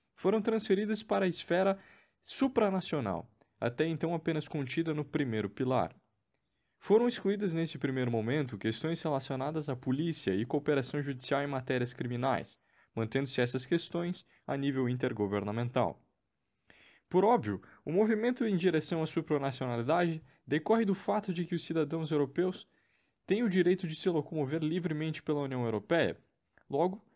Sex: male